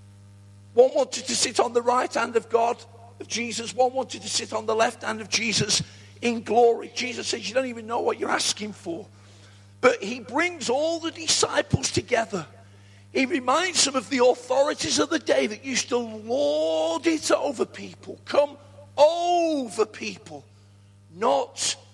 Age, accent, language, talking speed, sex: 50-69, British, English, 165 wpm, male